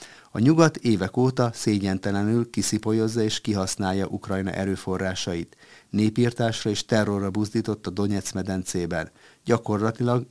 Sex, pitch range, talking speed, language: male, 95-120 Hz, 105 wpm, Hungarian